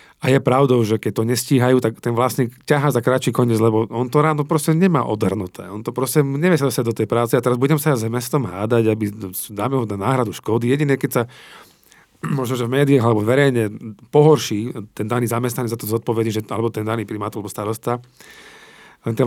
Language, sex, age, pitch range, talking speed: Slovak, male, 40-59, 110-130 Hz, 215 wpm